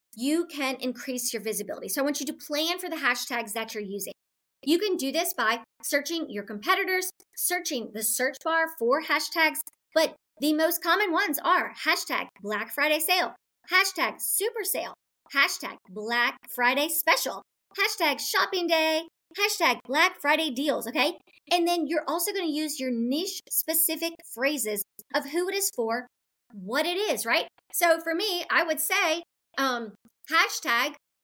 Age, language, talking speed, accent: 40-59, English, 160 wpm, American